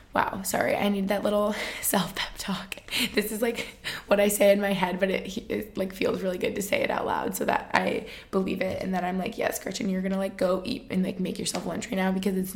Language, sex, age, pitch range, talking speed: English, female, 20-39, 190-230 Hz, 265 wpm